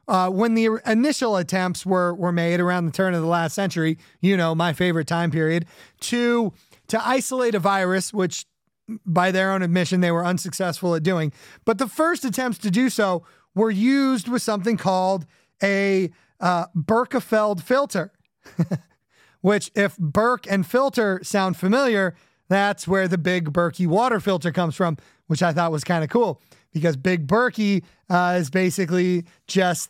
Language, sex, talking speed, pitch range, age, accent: English, male, 165 wpm, 175-215 Hz, 30-49, American